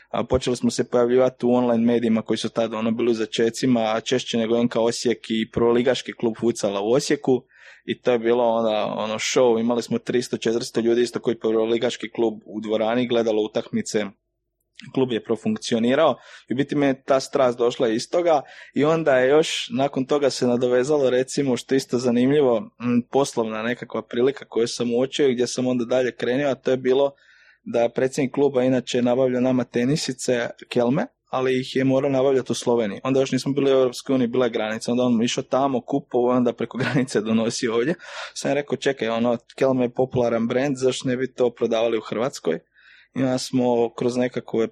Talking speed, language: 185 wpm, Croatian